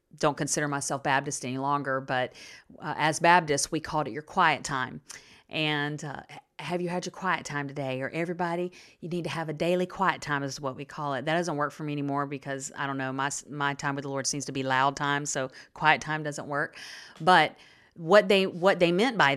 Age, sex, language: 40-59, female, English